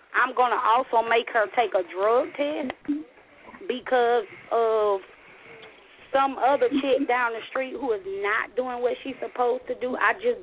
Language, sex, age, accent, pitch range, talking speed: English, female, 30-49, American, 230-285 Hz, 165 wpm